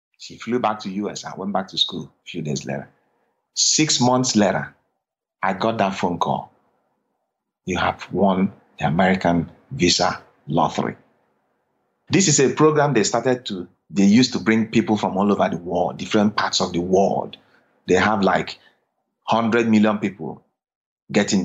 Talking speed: 165 wpm